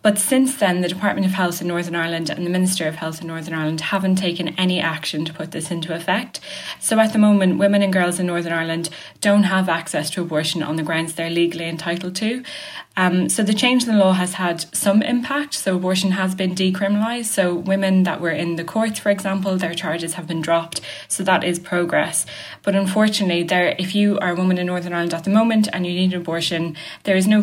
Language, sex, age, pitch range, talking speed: English, female, 10-29, 165-195 Hz, 230 wpm